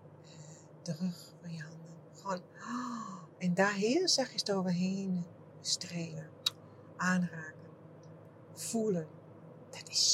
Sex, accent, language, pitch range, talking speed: female, Dutch, English, 160-195 Hz, 100 wpm